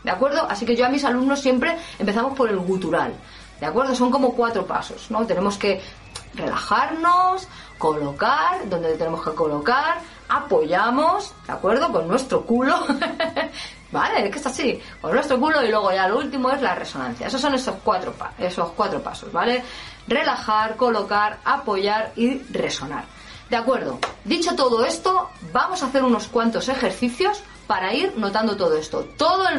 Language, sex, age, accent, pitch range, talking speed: Spanish, female, 30-49, Spanish, 200-285 Hz, 165 wpm